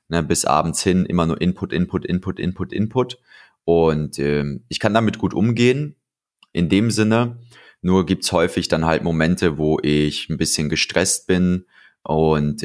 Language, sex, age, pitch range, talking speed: German, male, 30-49, 75-95 Hz, 160 wpm